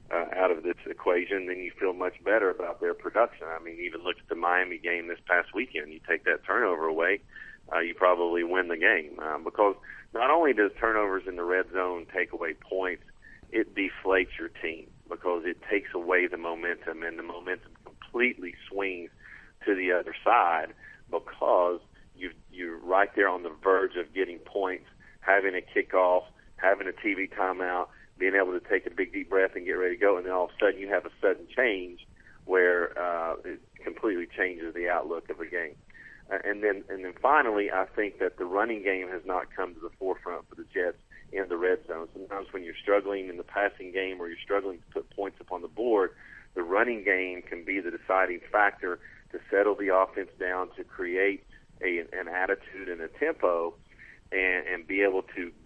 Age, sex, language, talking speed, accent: 40-59, male, English, 200 wpm, American